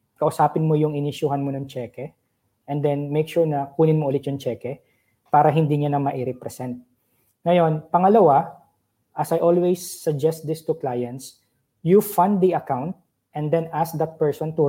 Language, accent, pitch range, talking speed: Filipino, native, 135-170 Hz, 175 wpm